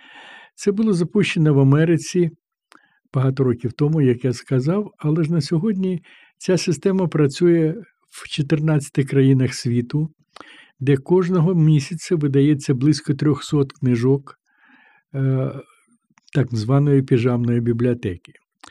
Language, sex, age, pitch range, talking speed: Ukrainian, male, 60-79, 130-160 Hz, 105 wpm